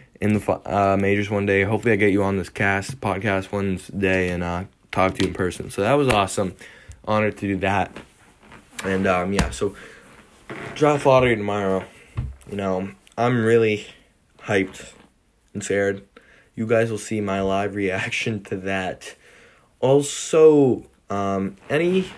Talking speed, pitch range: 155 wpm, 95-115 Hz